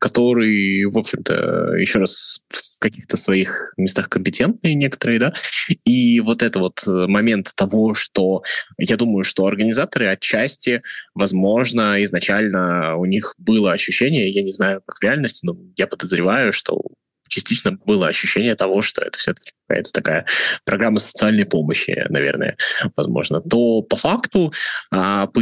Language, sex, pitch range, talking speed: Russian, male, 95-120 Hz, 135 wpm